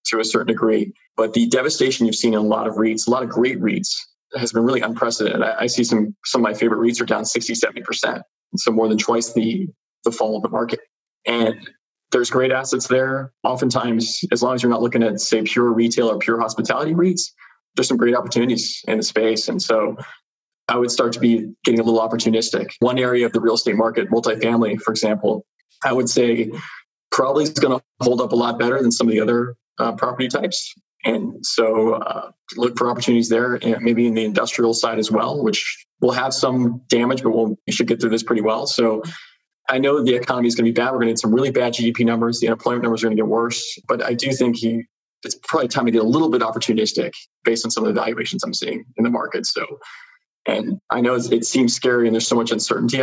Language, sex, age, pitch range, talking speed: English, male, 20-39, 115-125 Hz, 230 wpm